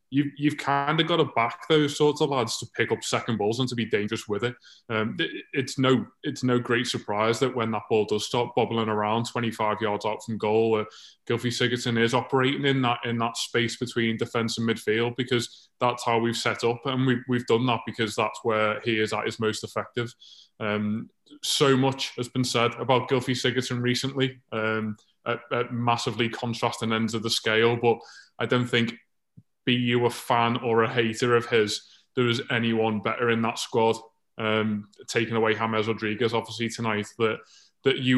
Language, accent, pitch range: English, British, 115-125 Hz